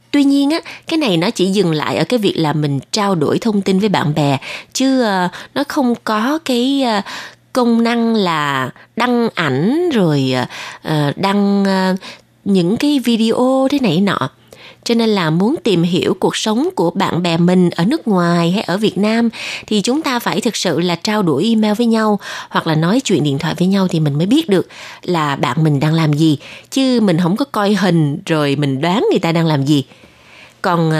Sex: female